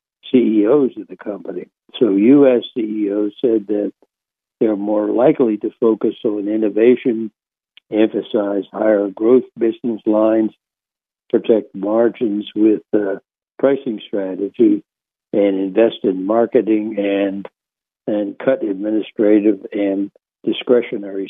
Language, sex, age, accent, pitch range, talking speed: English, male, 60-79, American, 100-115 Hz, 100 wpm